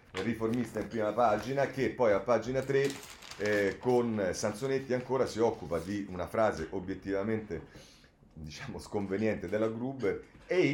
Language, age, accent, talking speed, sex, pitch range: Italian, 30-49, native, 135 wpm, male, 100-130 Hz